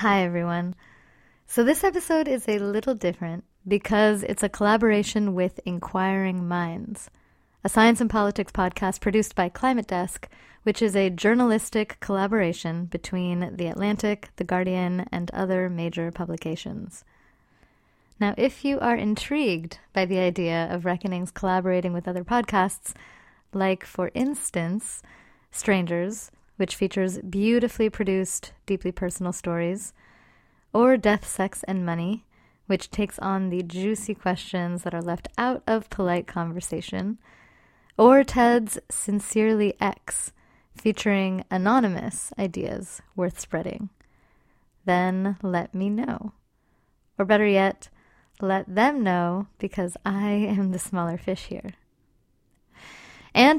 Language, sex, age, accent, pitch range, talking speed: English, female, 30-49, American, 180-215 Hz, 120 wpm